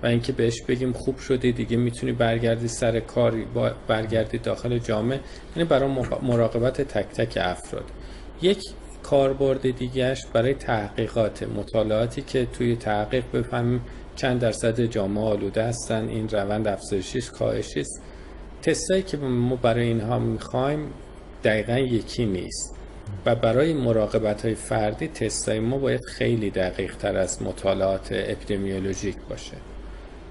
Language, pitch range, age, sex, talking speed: Persian, 110-130 Hz, 40-59, male, 125 wpm